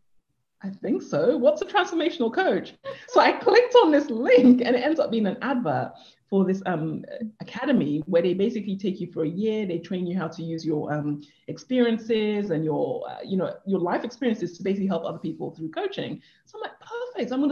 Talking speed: 210 wpm